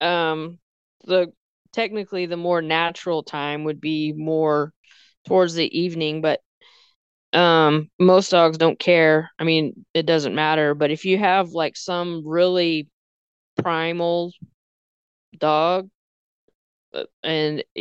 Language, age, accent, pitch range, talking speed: English, 20-39, American, 150-185 Hz, 115 wpm